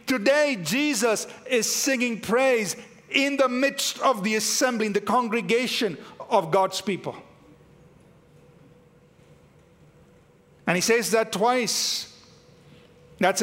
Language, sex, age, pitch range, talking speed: English, male, 50-69, 165-235 Hz, 105 wpm